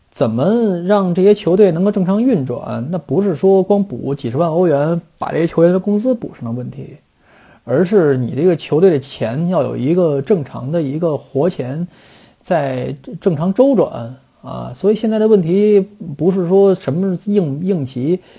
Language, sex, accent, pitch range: Chinese, male, native, 135-195 Hz